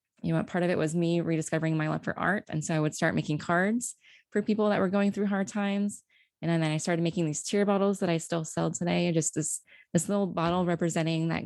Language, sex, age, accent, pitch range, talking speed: English, female, 20-39, American, 160-185 Hz, 245 wpm